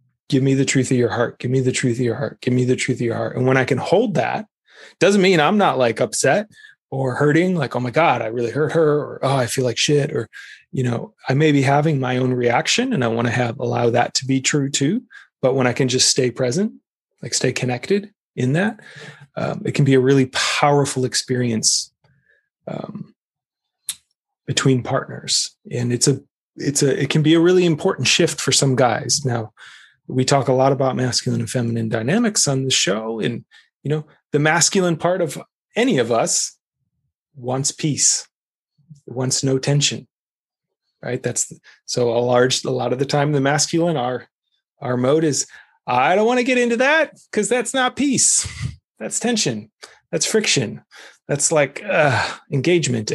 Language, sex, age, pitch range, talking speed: English, male, 20-39, 125-160 Hz, 195 wpm